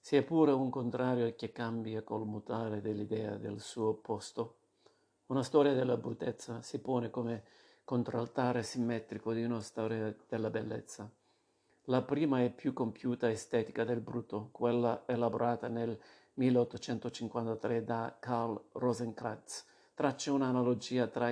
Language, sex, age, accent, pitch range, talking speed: Italian, male, 50-69, native, 110-125 Hz, 125 wpm